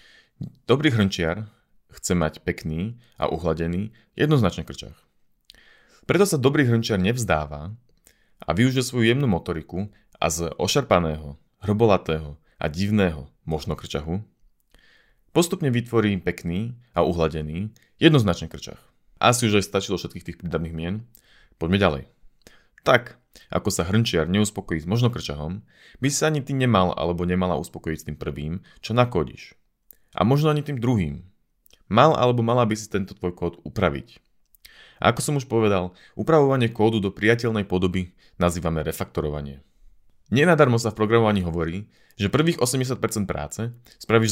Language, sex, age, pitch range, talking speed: Slovak, male, 30-49, 85-120 Hz, 135 wpm